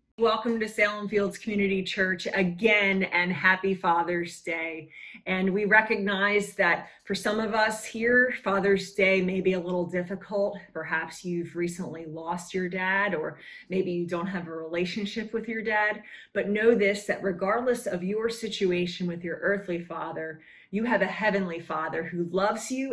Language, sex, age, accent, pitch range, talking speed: English, female, 30-49, American, 175-220 Hz, 165 wpm